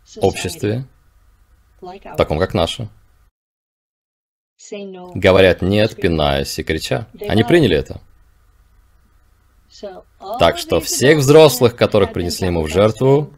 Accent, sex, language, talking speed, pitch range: native, male, Russian, 95 wpm, 85-125 Hz